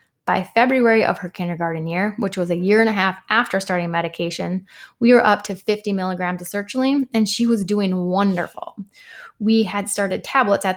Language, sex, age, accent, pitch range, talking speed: English, female, 20-39, American, 185-235 Hz, 190 wpm